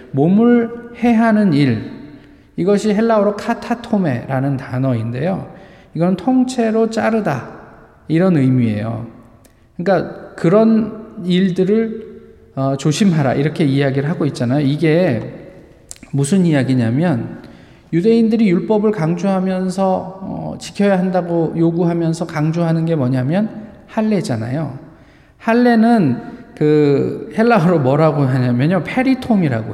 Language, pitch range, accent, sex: Korean, 140-215 Hz, native, male